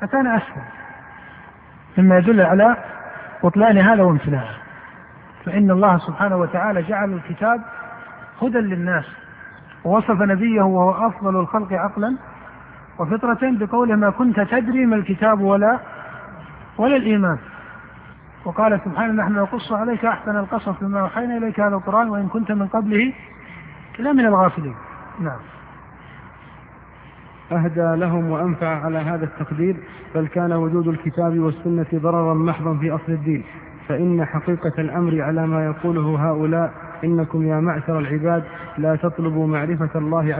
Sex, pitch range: male, 160-200 Hz